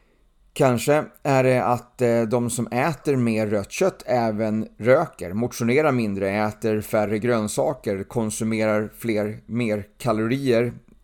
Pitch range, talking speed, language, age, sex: 105-130 Hz, 115 wpm, Swedish, 30-49, male